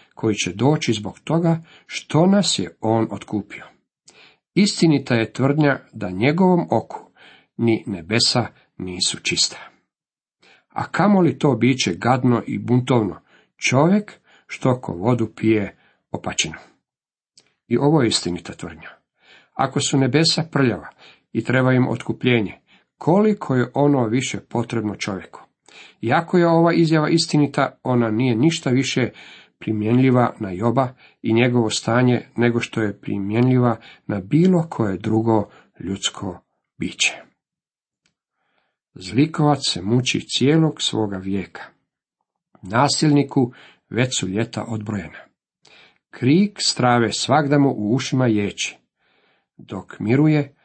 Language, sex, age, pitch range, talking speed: Croatian, male, 50-69, 110-150 Hz, 115 wpm